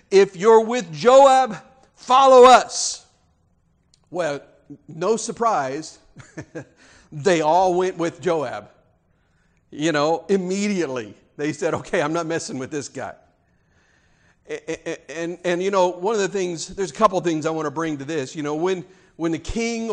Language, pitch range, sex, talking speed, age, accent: English, 155-200 Hz, male, 155 wpm, 50-69, American